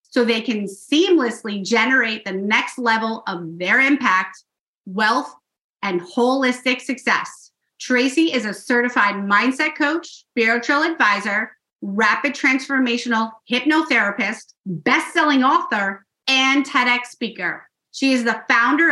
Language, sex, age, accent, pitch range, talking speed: English, female, 30-49, American, 210-260 Hz, 110 wpm